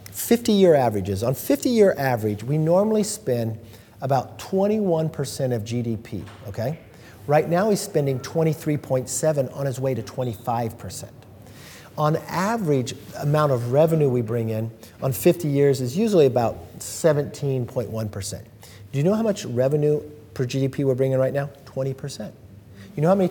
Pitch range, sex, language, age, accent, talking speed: 115-180 Hz, male, English, 50-69, American, 150 wpm